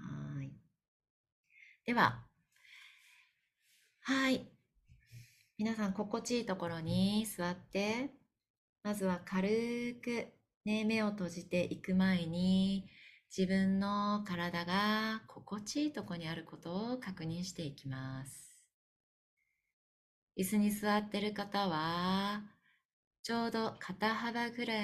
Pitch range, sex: 175-215 Hz, female